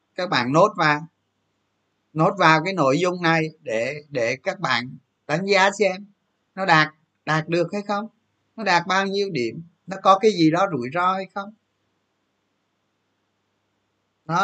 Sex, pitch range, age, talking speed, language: male, 105-165 Hz, 20-39, 160 wpm, Vietnamese